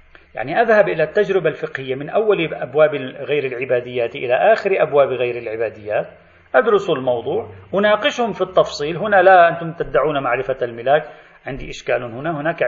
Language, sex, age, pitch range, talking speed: Arabic, male, 40-59, 145-215 Hz, 140 wpm